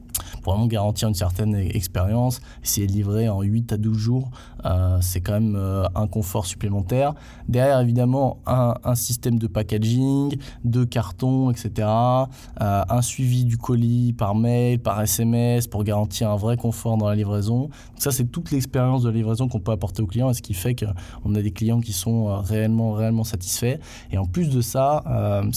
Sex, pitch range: male, 105-120 Hz